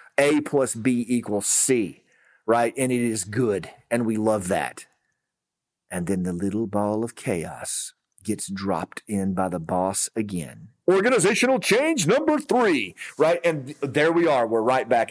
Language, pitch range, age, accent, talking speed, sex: English, 120-165 Hz, 40-59, American, 160 wpm, male